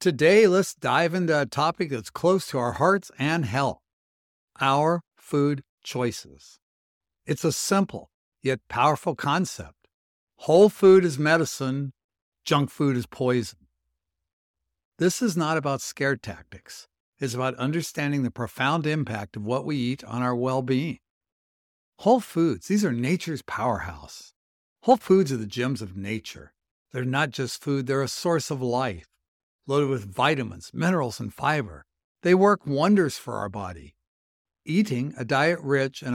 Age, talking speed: 60-79, 145 wpm